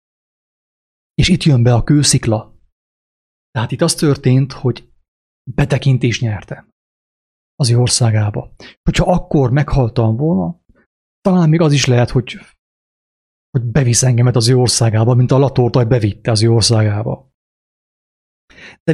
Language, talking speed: English, 125 wpm